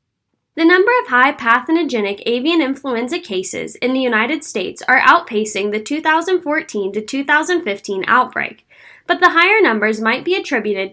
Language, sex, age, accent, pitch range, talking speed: English, female, 10-29, American, 215-320 Hz, 145 wpm